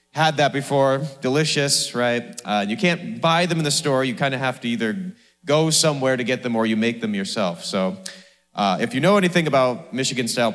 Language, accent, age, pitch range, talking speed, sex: English, American, 30-49, 115-160 Hz, 210 wpm, male